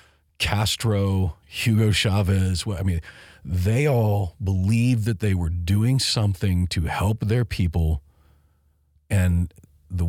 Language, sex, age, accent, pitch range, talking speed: English, male, 40-59, American, 80-100 Hz, 115 wpm